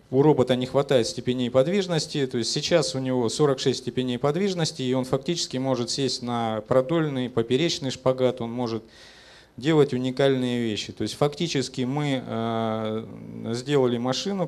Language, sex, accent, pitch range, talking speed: Russian, male, native, 115-140 Hz, 125 wpm